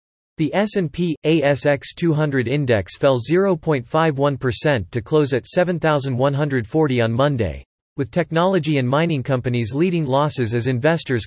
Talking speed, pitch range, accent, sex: 115 wpm, 120-160 Hz, American, male